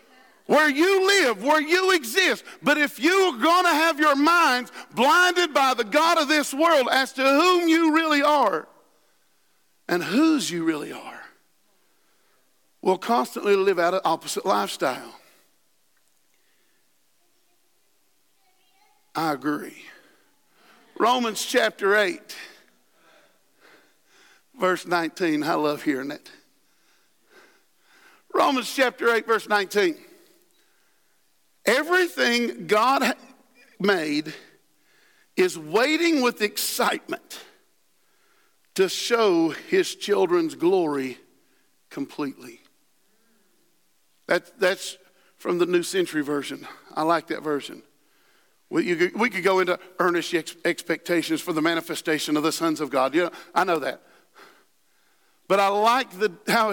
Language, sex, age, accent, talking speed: English, male, 50-69, American, 110 wpm